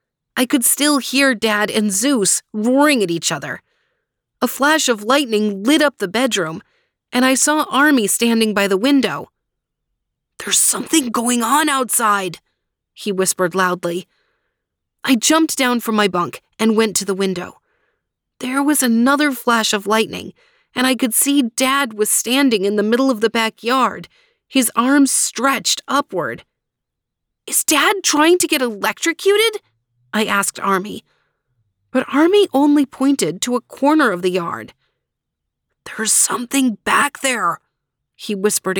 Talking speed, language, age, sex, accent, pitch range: 145 wpm, English, 30-49, female, American, 210-285 Hz